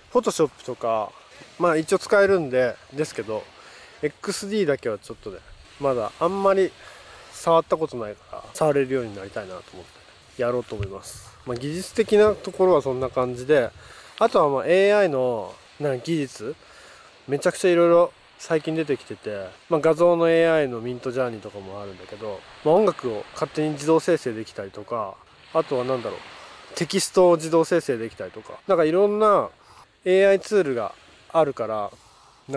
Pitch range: 120-175 Hz